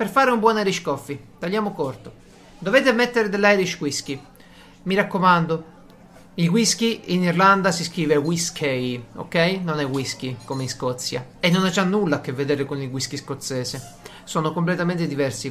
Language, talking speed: Italian, 165 wpm